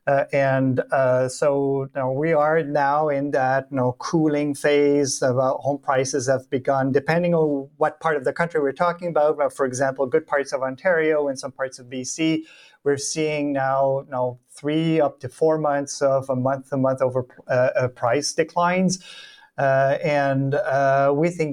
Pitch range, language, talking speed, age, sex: 130-150 Hz, English, 190 wpm, 30-49, male